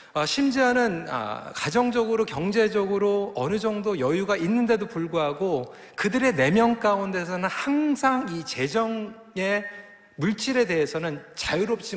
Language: Korean